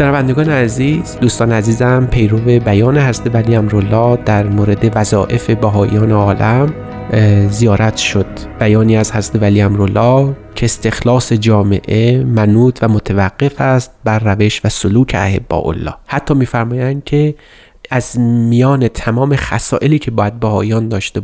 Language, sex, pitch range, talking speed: Persian, male, 110-130 Hz, 125 wpm